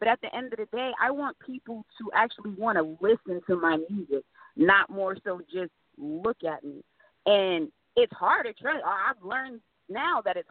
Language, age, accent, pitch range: English, 20-39, American, 200-280 Hz